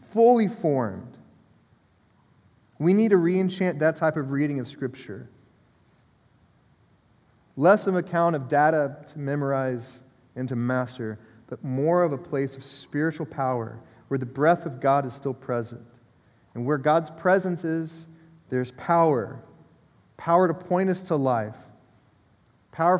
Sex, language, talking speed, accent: male, English, 135 wpm, American